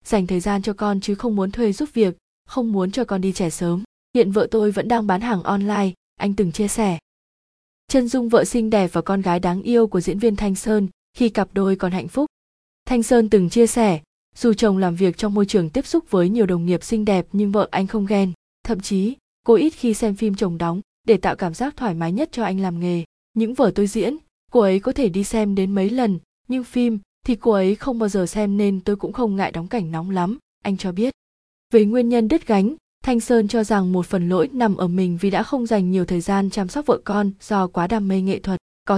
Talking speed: 250 wpm